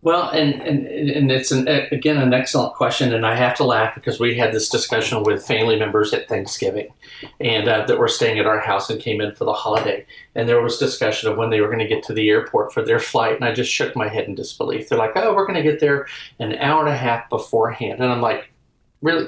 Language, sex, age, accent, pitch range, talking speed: English, male, 40-59, American, 115-155 Hz, 255 wpm